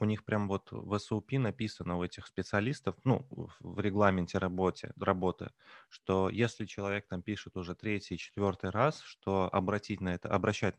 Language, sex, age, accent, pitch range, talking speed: Russian, male, 20-39, native, 95-115 Hz, 160 wpm